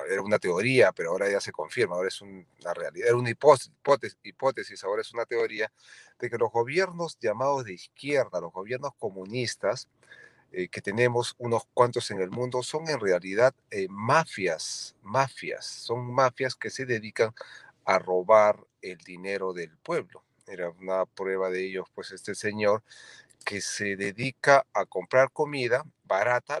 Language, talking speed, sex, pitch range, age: Spanish, 160 wpm, male, 105-140 Hz, 40-59